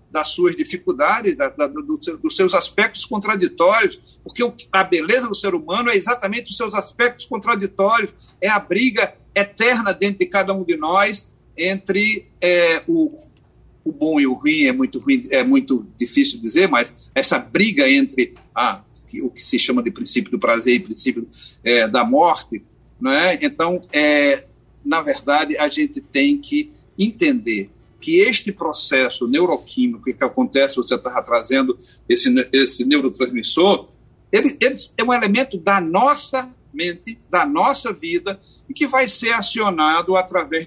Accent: Brazilian